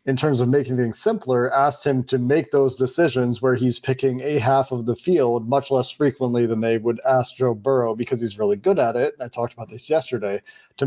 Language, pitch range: English, 120-145 Hz